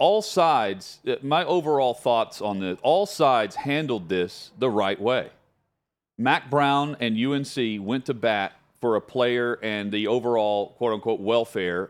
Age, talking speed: 40-59, 150 wpm